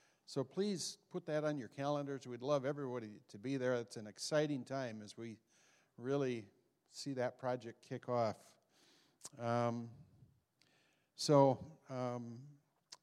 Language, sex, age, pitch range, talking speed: English, male, 50-69, 110-135 Hz, 130 wpm